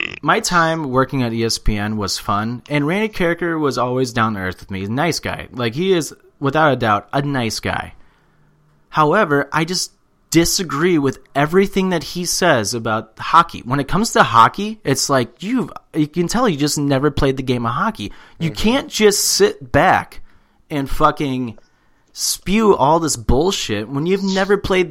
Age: 30-49